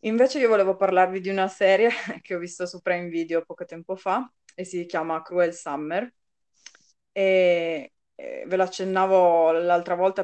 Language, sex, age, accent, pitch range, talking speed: Italian, female, 20-39, native, 165-195 Hz, 160 wpm